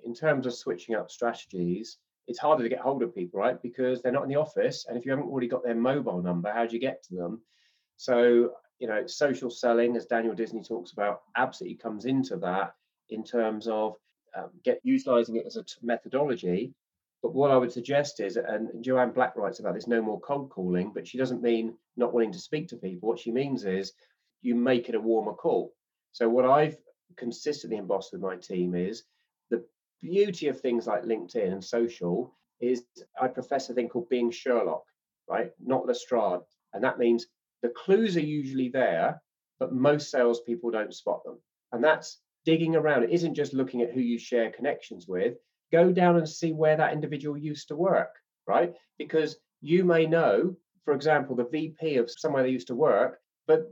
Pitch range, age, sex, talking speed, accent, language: 115-155 Hz, 30-49, male, 200 wpm, British, English